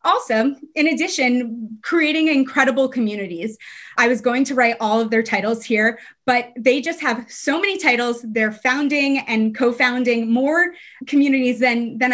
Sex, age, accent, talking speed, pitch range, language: female, 20-39, American, 155 wpm, 215-255 Hz, English